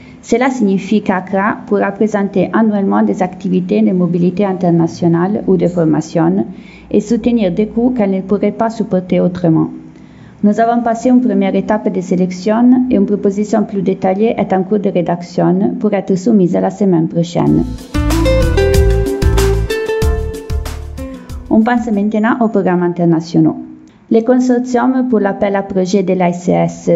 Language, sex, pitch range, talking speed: French, female, 175-210 Hz, 140 wpm